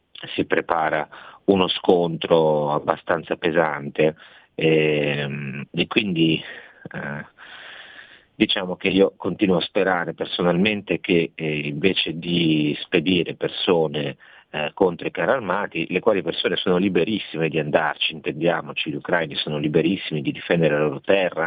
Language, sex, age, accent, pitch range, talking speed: Italian, male, 40-59, native, 75-80 Hz, 125 wpm